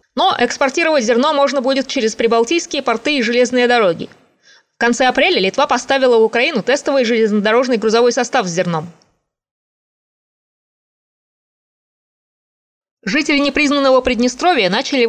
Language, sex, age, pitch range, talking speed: Russian, female, 20-39, 225-270 Hz, 110 wpm